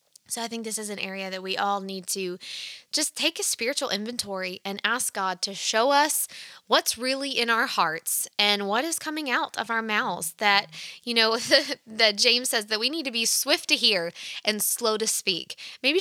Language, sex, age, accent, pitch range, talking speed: English, female, 20-39, American, 190-245 Hz, 205 wpm